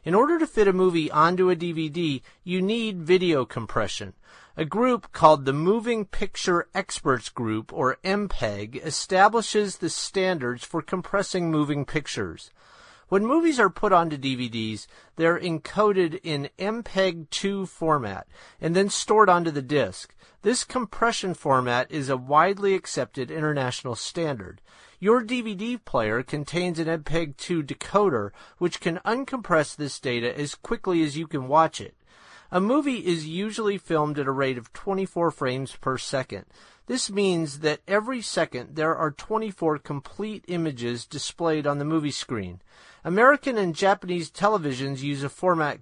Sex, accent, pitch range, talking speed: male, American, 140-195 Hz, 145 wpm